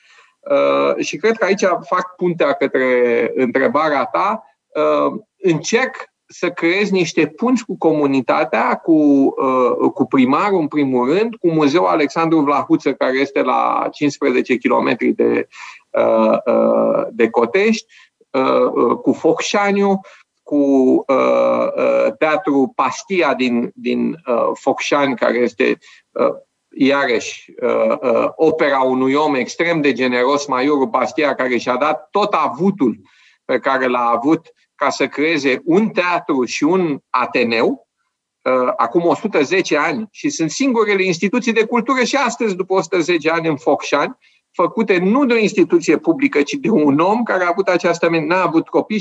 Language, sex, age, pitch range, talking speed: Romanian, male, 40-59, 145-210 Hz, 125 wpm